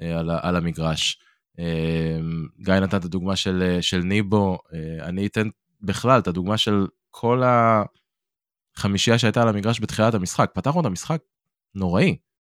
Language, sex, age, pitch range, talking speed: Hebrew, male, 20-39, 90-115 Hz, 130 wpm